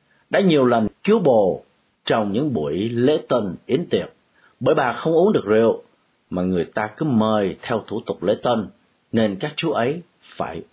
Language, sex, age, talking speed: Vietnamese, male, 50-69, 185 wpm